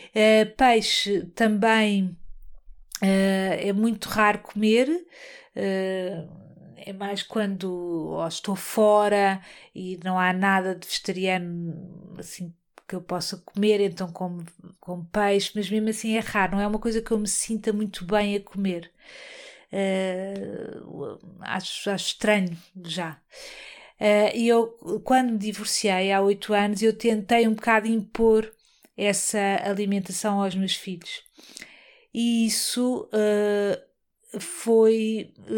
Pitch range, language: 195-225 Hz, Portuguese